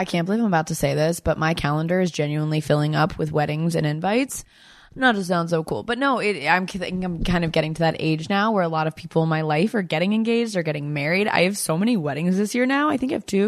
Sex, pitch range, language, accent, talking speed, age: female, 155-210 Hz, English, American, 275 wpm, 20-39